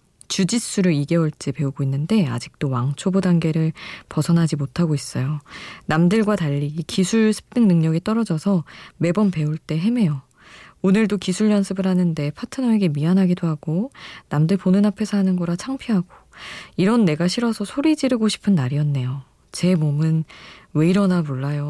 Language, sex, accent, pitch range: Korean, female, native, 150-210 Hz